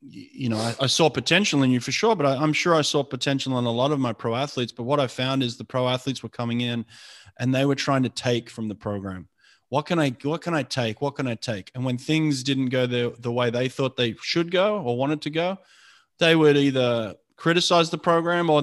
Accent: Australian